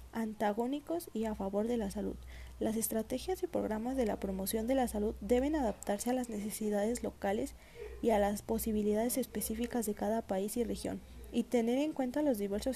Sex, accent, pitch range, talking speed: female, Colombian, 215-255 Hz, 185 wpm